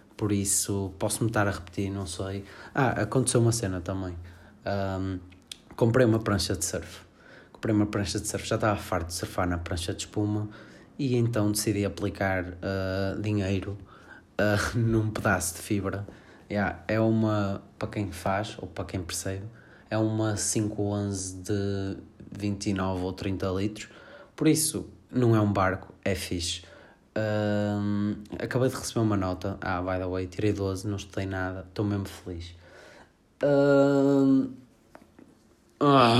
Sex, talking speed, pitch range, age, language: male, 150 wpm, 95-115 Hz, 20-39, Portuguese